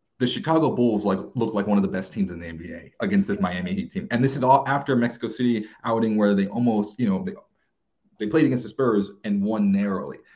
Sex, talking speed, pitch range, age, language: male, 240 wpm, 100-160 Hz, 30-49, English